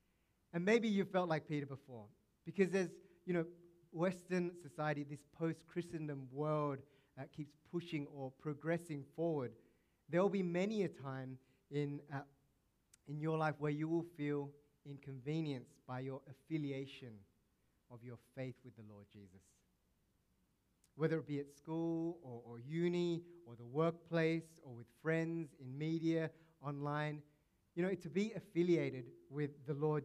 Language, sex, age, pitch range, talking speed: English, male, 30-49, 130-160 Hz, 150 wpm